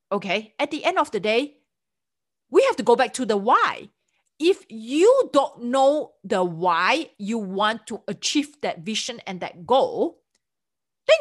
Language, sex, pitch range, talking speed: English, female, 215-295 Hz, 165 wpm